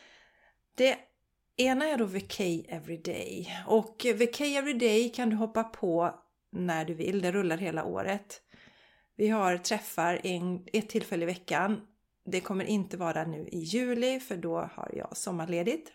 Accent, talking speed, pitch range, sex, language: native, 155 wpm, 170-225 Hz, female, Swedish